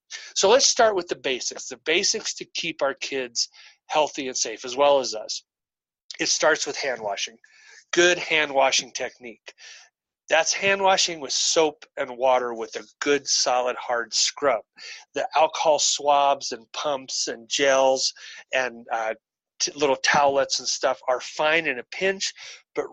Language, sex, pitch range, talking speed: English, male, 130-170 Hz, 150 wpm